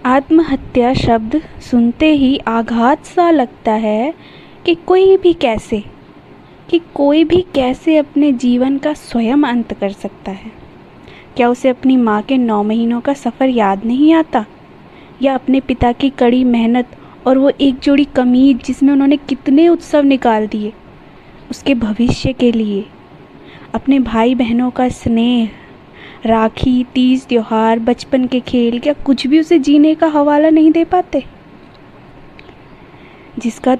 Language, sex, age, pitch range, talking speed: Hindi, female, 20-39, 230-285 Hz, 140 wpm